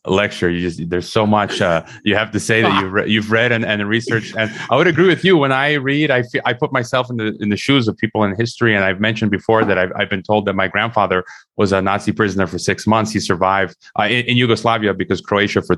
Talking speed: 265 wpm